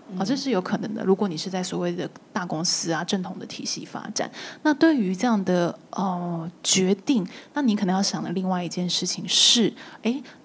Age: 20-39